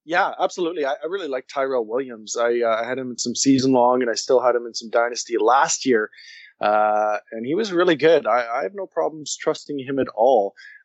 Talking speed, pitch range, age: 230 wpm, 110-135 Hz, 20-39